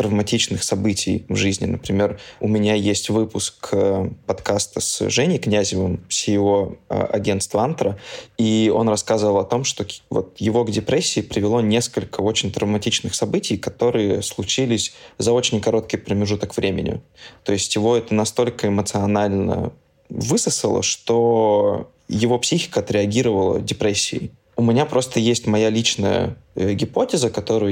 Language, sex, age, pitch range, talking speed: Russian, male, 20-39, 105-115 Hz, 130 wpm